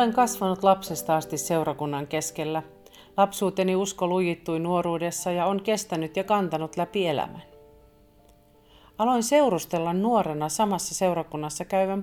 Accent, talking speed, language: native, 115 wpm, Finnish